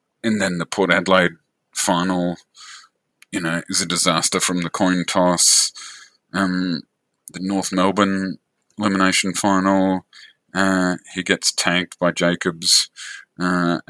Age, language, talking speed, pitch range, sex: 30-49, English, 120 wpm, 85-100 Hz, male